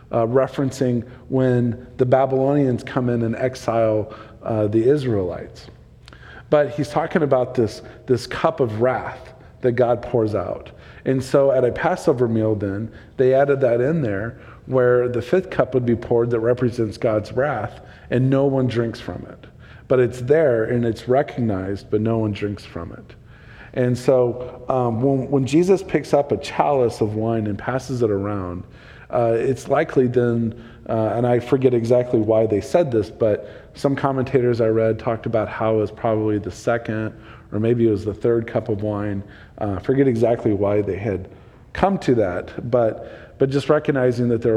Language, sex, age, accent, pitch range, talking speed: English, male, 40-59, American, 110-130 Hz, 180 wpm